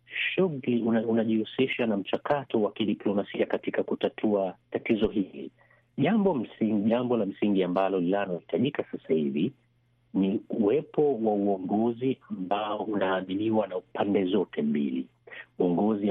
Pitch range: 100-125 Hz